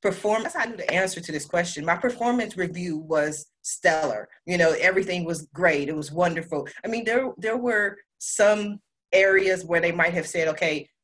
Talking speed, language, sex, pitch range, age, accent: 185 wpm, English, female, 160-220 Hz, 30-49, American